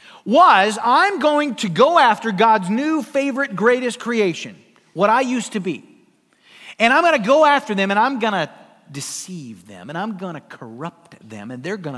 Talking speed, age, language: 190 wpm, 50-69, English